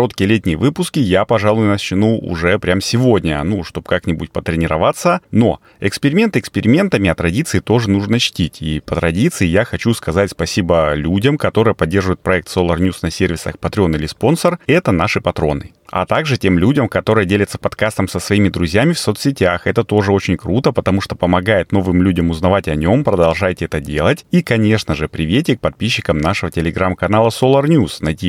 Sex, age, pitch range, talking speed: male, 30-49, 85-110 Hz, 170 wpm